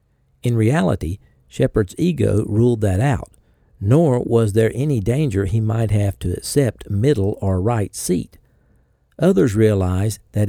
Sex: male